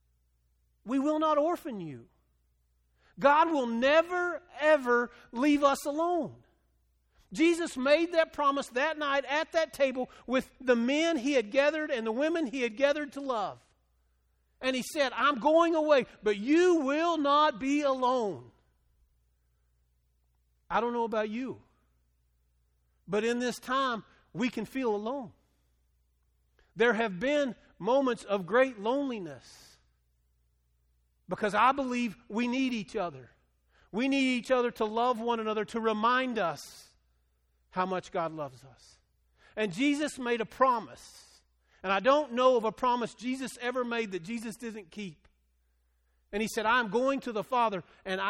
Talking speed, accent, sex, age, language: 145 wpm, American, male, 50-69, English